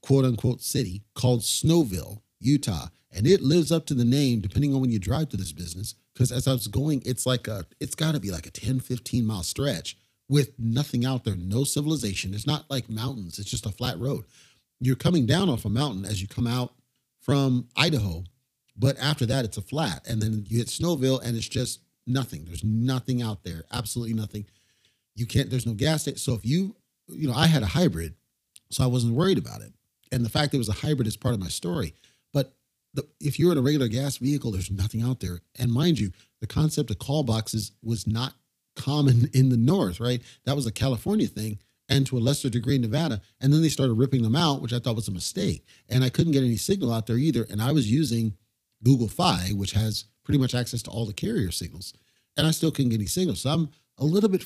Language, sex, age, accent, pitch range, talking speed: English, male, 40-59, American, 110-140 Hz, 230 wpm